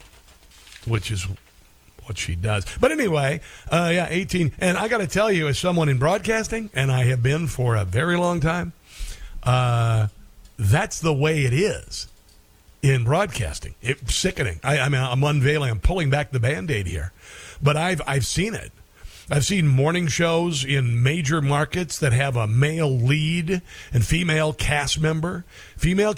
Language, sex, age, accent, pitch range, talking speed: English, male, 50-69, American, 105-165 Hz, 170 wpm